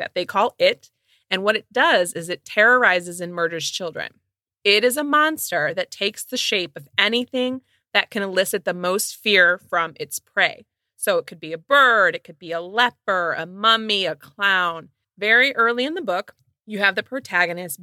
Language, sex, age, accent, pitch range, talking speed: English, female, 30-49, American, 170-220 Hz, 190 wpm